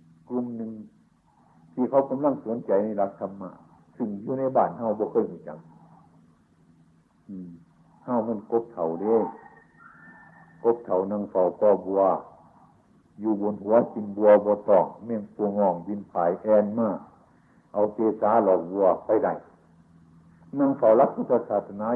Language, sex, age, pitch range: Chinese, male, 60-79, 95-135 Hz